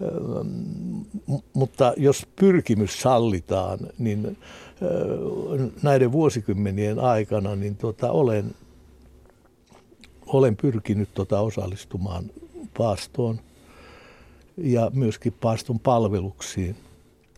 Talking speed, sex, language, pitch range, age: 70 wpm, male, Finnish, 95-125 Hz, 60-79